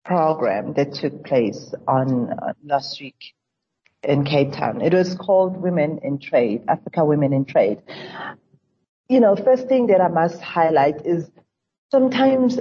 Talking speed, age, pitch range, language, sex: 150 wpm, 40-59, 165-210 Hz, English, female